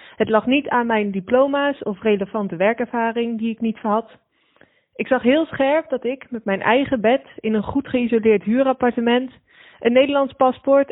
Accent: Dutch